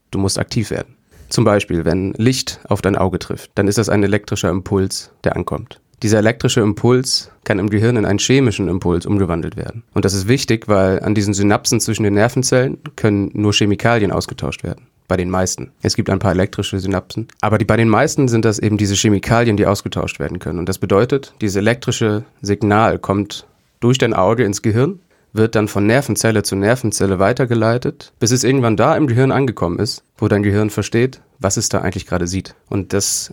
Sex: male